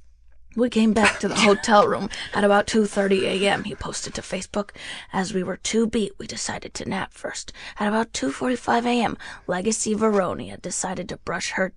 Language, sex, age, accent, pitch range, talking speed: English, female, 20-39, American, 185-220 Hz, 180 wpm